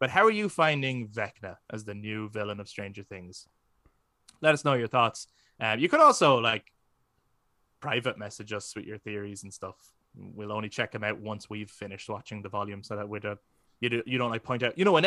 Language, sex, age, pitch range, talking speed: English, male, 20-39, 105-130 Hz, 215 wpm